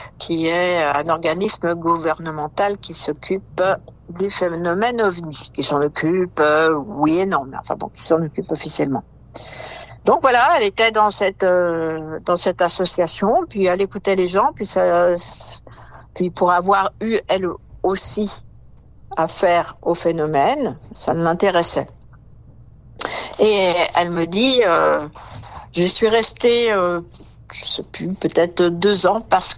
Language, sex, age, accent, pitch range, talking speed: French, female, 60-79, French, 165-200 Hz, 140 wpm